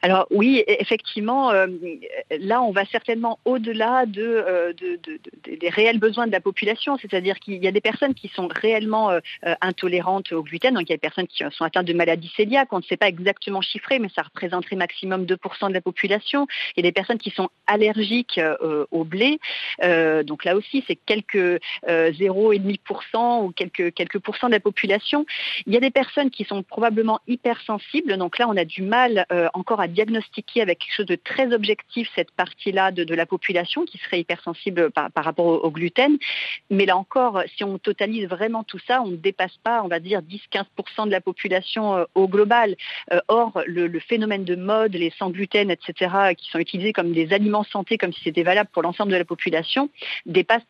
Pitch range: 180-225 Hz